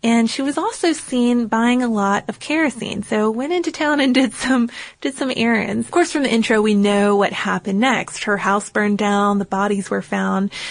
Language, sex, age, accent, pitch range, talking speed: English, female, 20-39, American, 205-245 Hz, 215 wpm